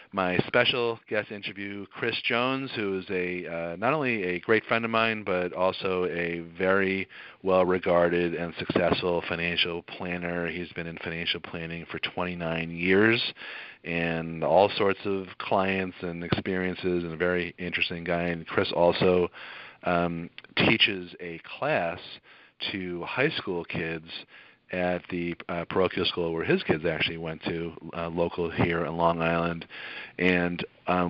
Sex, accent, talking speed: male, American, 145 wpm